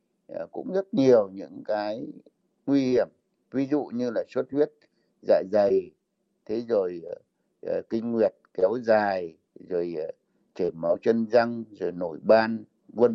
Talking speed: 145 wpm